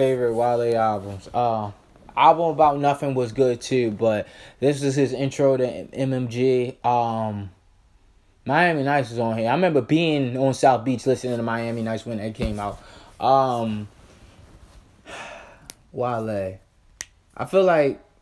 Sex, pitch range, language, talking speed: male, 105-140 Hz, English, 145 wpm